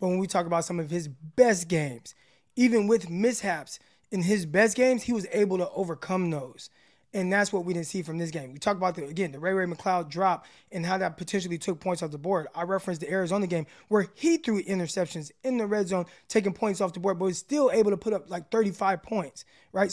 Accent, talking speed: American, 240 wpm